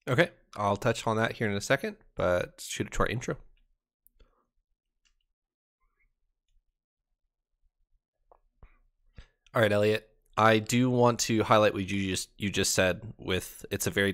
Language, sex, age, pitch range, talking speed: English, male, 20-39, 95-110 Hz, 140 wpm